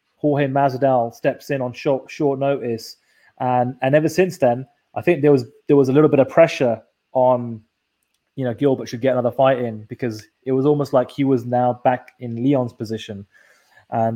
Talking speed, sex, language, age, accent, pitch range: 195 wpm, male, English, 20-39, British, 115-145 Hz